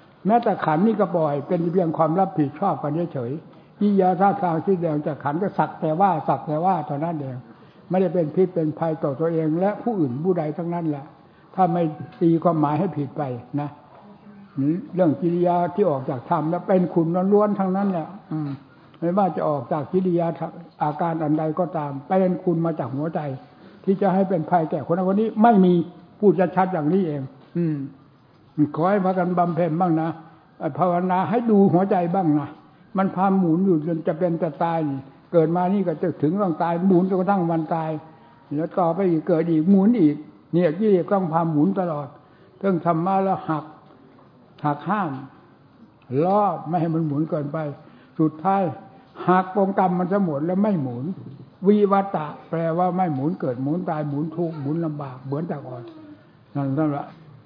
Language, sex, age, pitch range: English, male, 60-79, 150-185 Hz